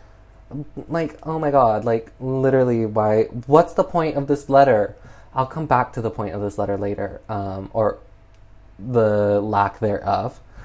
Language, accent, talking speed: English, American, 160 wpm